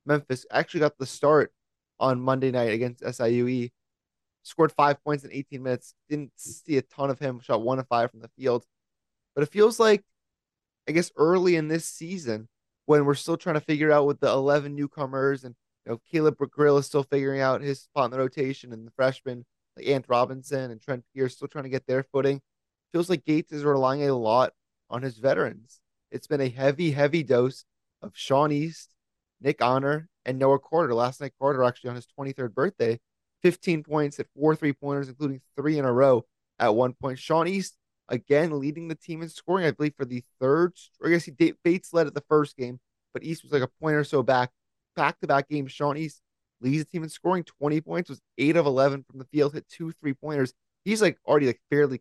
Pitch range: 125-150 Hz